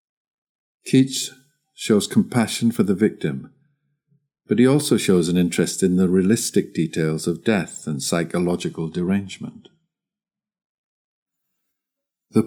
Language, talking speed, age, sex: Italian, 105 wpm, 50-69, male